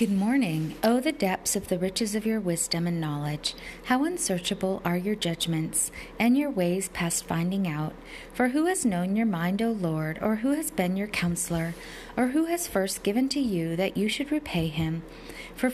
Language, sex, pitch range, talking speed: English, female, 170-240 Hz, 200 wpm